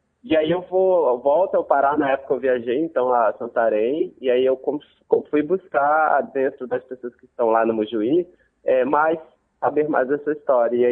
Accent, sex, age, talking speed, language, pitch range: Brazilian, male, 20-39, 200 wpm, Portuguese, 130-205 Hz